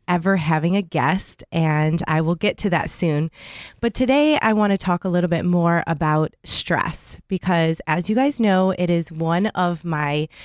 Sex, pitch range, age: female, 155-195 Hz, 20-39